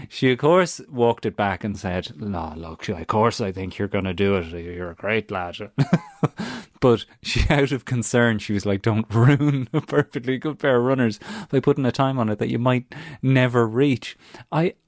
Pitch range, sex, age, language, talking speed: 100-130 Hz, male, 30-49, English, 205 wpm